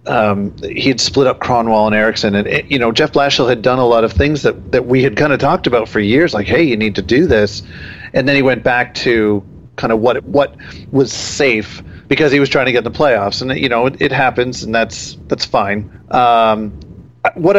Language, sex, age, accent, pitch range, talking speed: English, male, 40-59, American, 105-130 Hz, 235 wpm